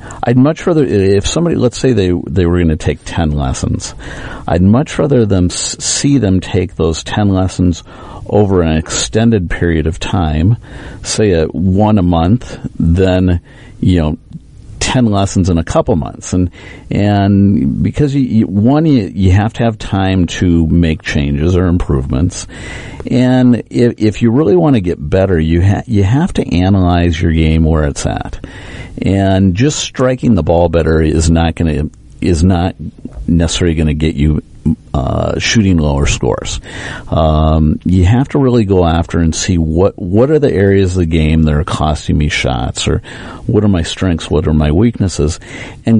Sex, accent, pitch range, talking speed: male, American, 80-110 Hz, 175 wpm